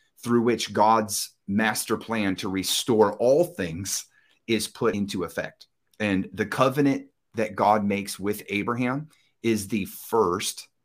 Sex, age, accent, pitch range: male, 30-49, American, 95-125 Hz